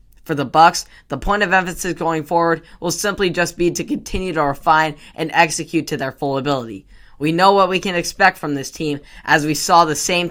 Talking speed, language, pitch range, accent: 215 wpm, English, 145-170 Hz, American